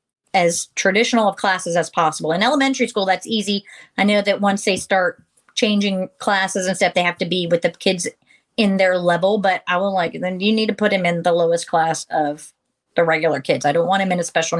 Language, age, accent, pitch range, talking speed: English, 30-49, American, 190-255 Hz, 230 wpm